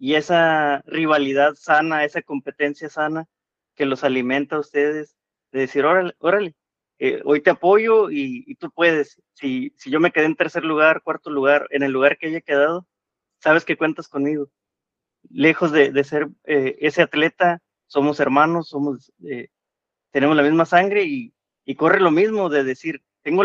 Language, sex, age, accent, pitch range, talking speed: Spanish, male, 30-49, Mexican, 140-170 Hz, 170 wpm